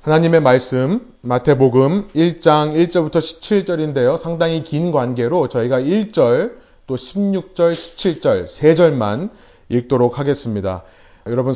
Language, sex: Korean, male